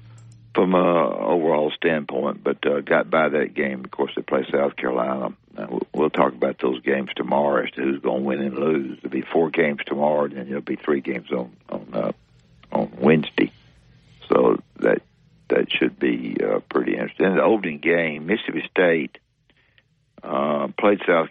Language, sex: English, male